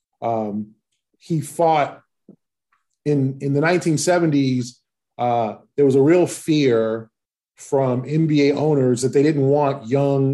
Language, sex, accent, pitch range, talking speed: English, male, American, 130-145 Hz, 120 wpm